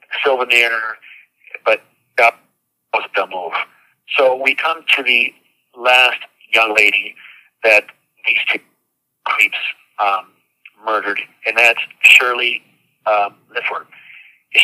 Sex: male